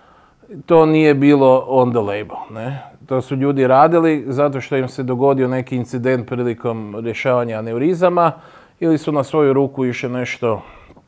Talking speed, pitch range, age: 150 wpm, 115-155 Hz, 30-49